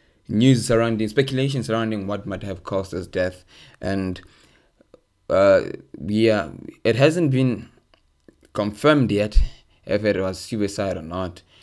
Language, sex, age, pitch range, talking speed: English, male, 20-39, 95-115 Hz, 125 wpm